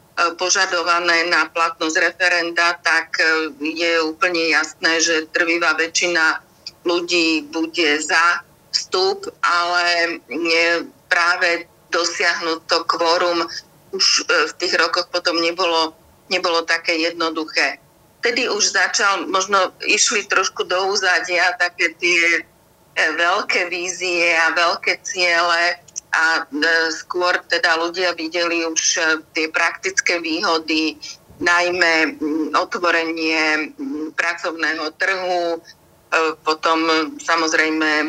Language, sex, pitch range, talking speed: Slovak, female, 160-175 Hz, 95 wpm